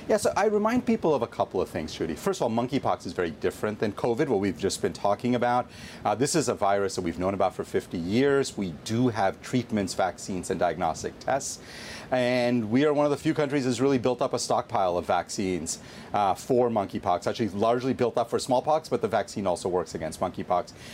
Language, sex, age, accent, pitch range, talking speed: English, male, 40-59, American, 105-130 Hz, 230 wpm